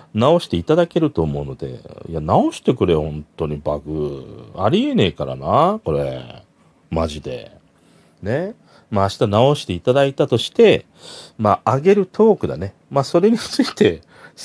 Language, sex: Japanese, male